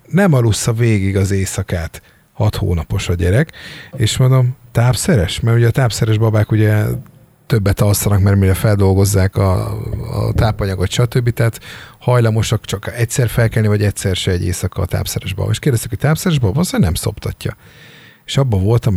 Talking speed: 160 wpm